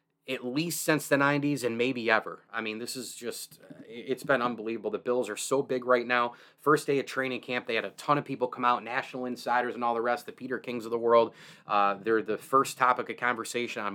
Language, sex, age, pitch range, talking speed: English, male, 30-49, 115-130 Hz, 230 wpm